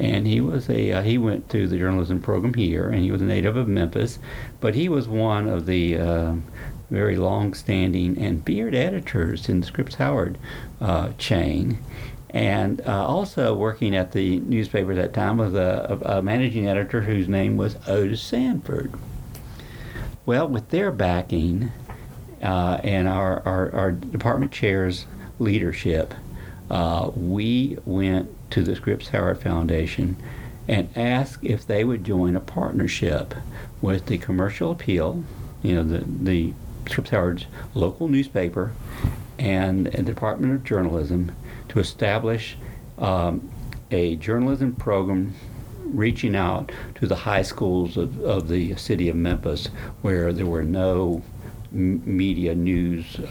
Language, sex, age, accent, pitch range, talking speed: English, male, 50-69, American, 90-120 Hz, 140 wpm